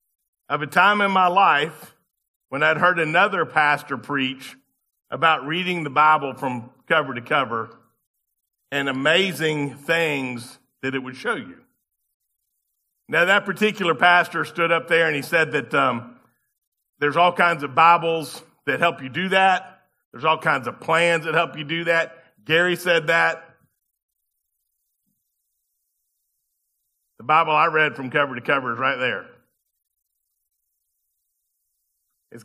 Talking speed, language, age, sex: 140 wpm, English, 50-69, male